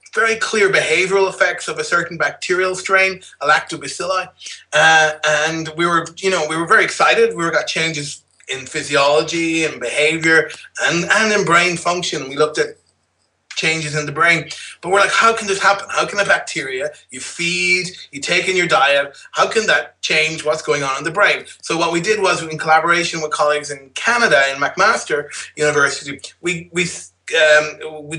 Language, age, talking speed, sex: English, 30-49, 185 wpm, male